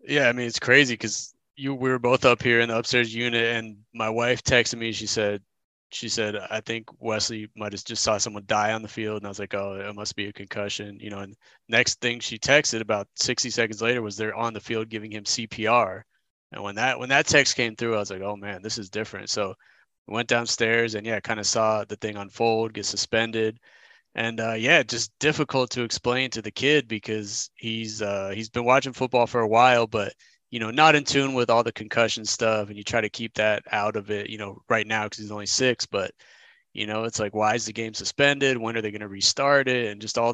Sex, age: male, 20-39